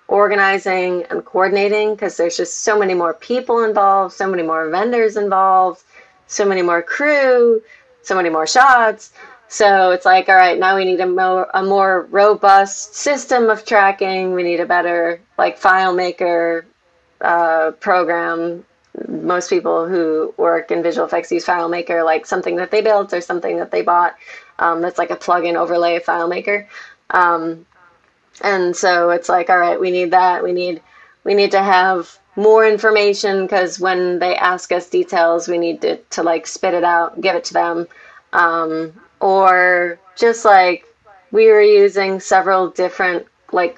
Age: 20-39